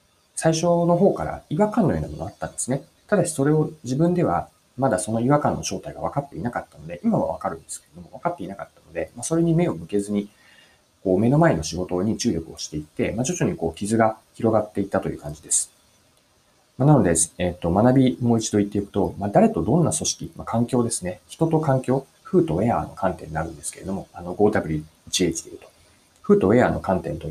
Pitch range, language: 85-130 Hz, Japanese